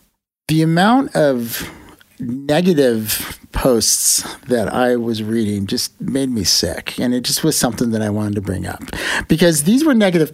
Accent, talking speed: American, 165 wpm